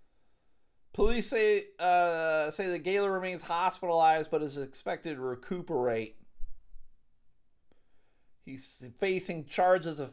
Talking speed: 100 wpm